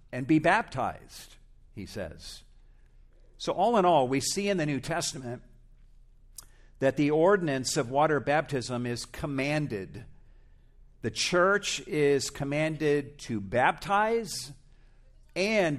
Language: English